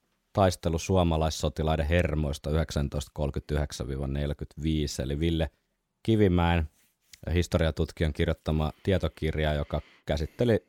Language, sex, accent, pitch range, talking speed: Finnish, male, native, 75-90 Hz, 75 wpm